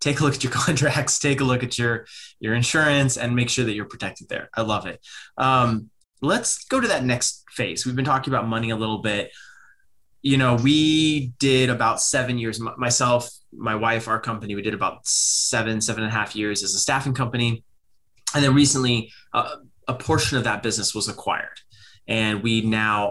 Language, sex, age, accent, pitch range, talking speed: English, male, 20-39, American, 110-130 Hz, 200 wpm